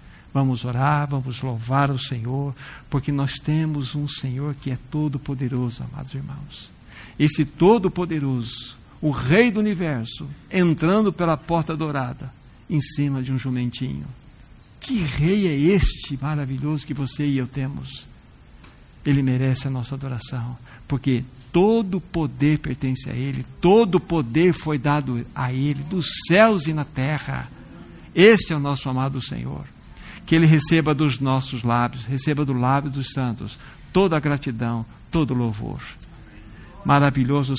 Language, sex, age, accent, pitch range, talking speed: Portuguese, male, 60-79, Brazilian, 130-155 Hz, 140 wpm